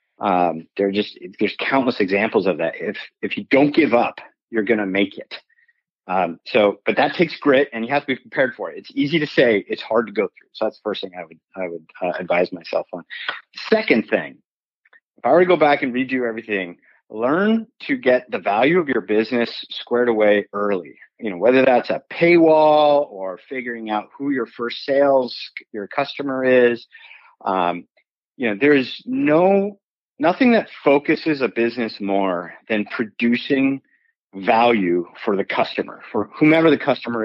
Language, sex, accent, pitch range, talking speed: English, male, American, 105-150 Hz, 185 wpm